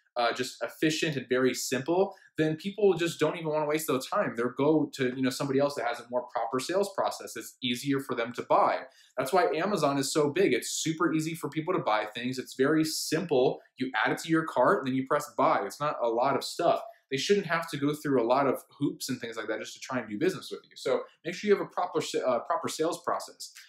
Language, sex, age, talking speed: English, male, 20-39, 260 wpm